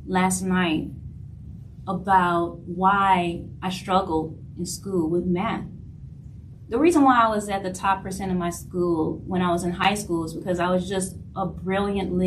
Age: 20-39